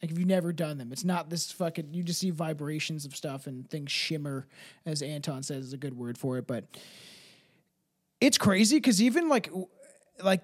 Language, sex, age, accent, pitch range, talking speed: English, male, 20-39, American, 170-230 Hz, 200 wpm